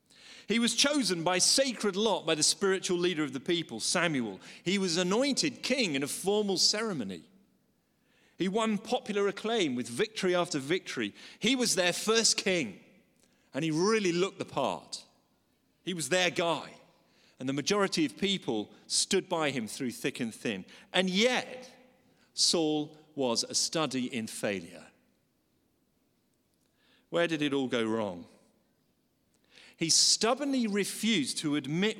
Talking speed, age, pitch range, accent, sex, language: 145 wpm, 40-59, 140-220 Hz, British, male, English